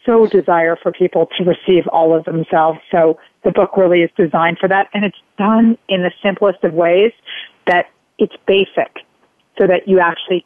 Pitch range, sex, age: 170-195 Hz, female, 40-59